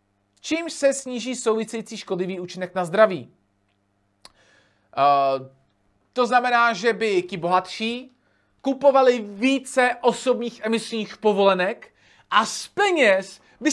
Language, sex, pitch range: Czech, male, 190-255 Hz